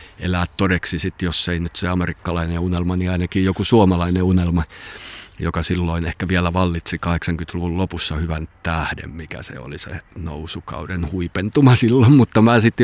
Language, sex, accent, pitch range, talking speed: Finnish, male, native, 85-100 Hz, 155 wpm